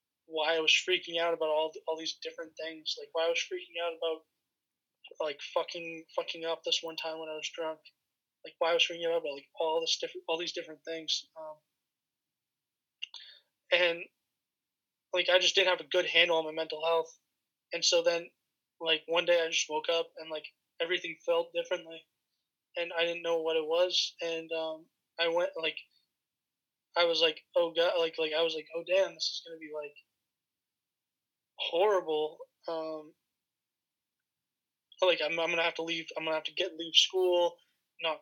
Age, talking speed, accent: 20-39, 190 wpm, American